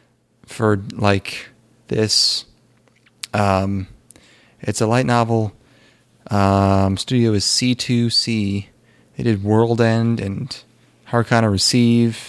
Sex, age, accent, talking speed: male, 30-49, American, 95 wpm